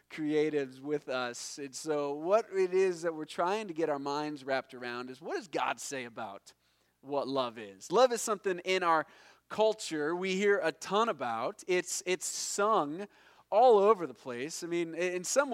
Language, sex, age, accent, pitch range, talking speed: English, male, 30-49, American, 155-220 Hz, 185 wpm